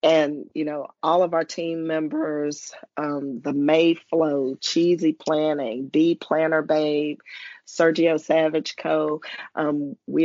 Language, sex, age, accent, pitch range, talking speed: English, female, 40-59, American, 150-165 Hz, 125 wpm